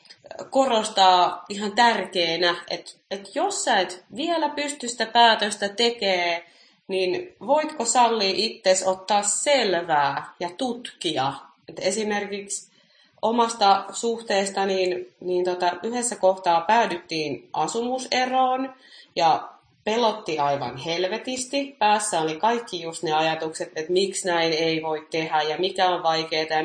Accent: native